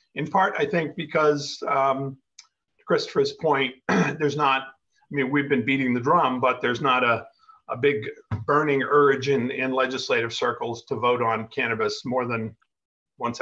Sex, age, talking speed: male, 40-59, 165 wpm